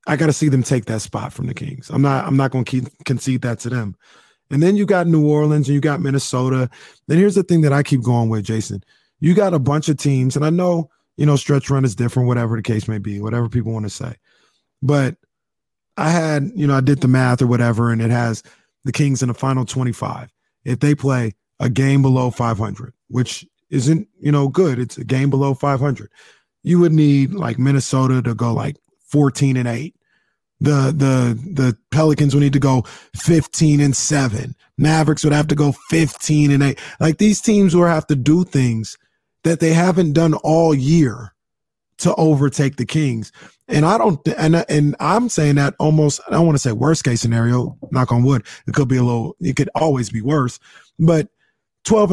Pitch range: 125-155 Hz